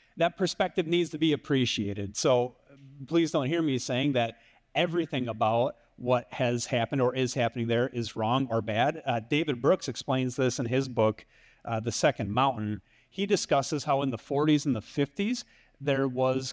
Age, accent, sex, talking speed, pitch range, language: 40-59, American, male, 180 wpm, 130-175 Hz, English